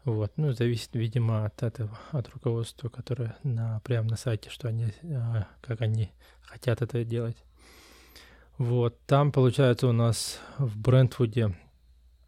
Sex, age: male, 20-39